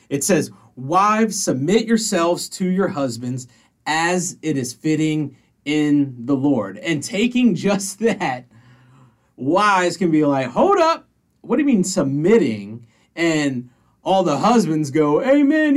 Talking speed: 135 wpm